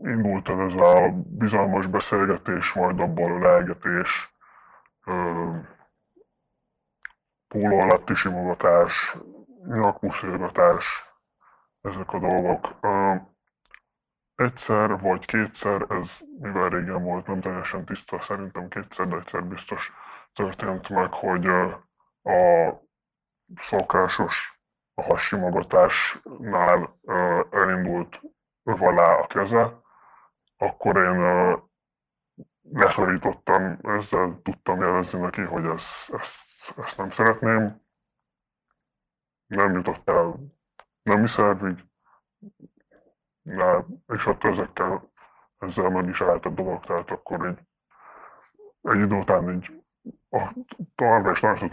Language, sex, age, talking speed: Hungarian, female, 20-39, 95 wpm